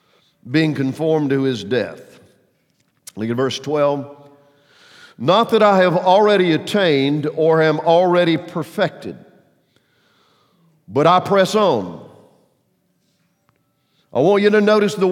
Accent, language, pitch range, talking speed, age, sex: American, English, 135-185 Hz, 115 wpm, 50-69, male